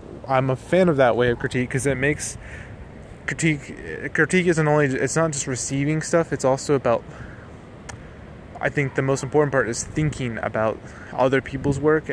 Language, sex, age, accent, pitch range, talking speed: English, male, 20-39, American, 115-135 Hz, 175 wpm